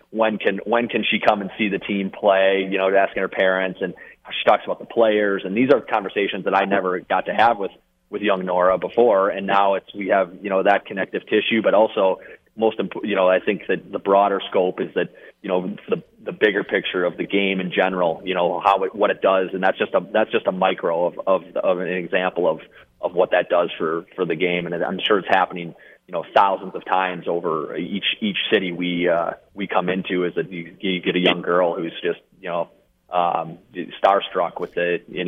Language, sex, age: English, male, 30-49